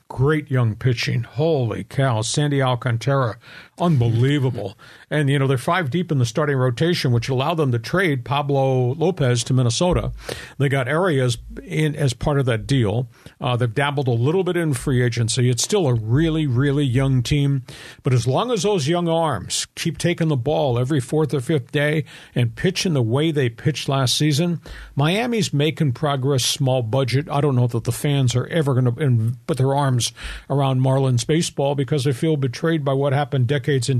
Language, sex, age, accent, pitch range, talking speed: English, male, 50-69, American, 125-150 Hz, 185 wpm